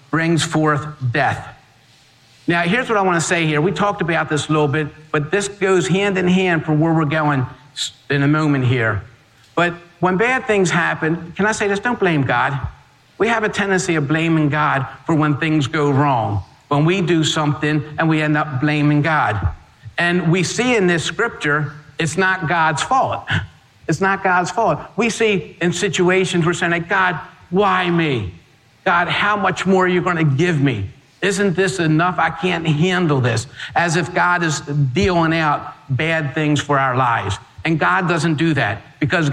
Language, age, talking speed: English, 50-69, 190 wpm